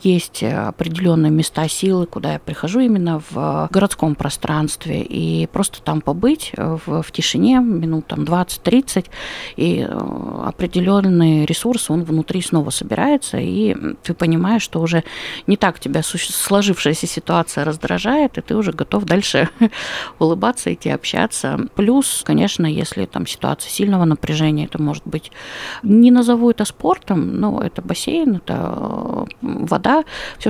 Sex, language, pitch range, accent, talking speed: female, Russian, 160-215 Hz, native, 135 wpm